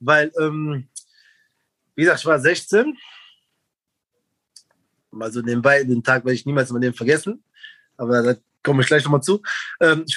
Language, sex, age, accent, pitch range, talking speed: German, male, 20-39, German, 145-210 Hz, 170 wpm